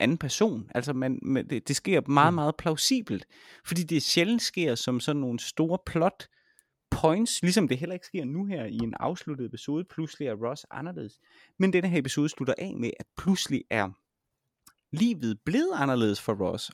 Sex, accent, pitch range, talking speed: male, native, 110-145 Hz, 175 wpm